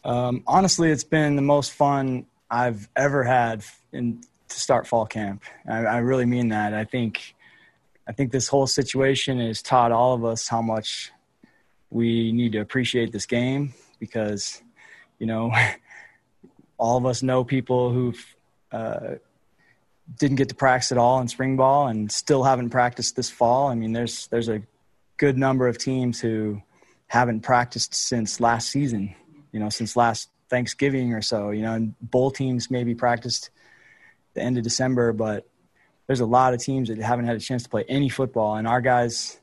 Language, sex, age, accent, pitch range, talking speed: English, male, 20-39, American, 115-130 Hz, 175 wpm